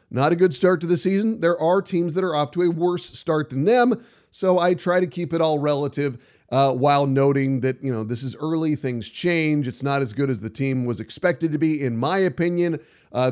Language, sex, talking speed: English, male, 240 wpm